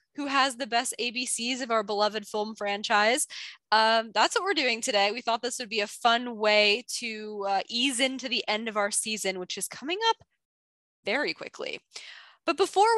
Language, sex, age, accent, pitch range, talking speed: English, female, 10-29, American, 200-270 Hz, 190 wpm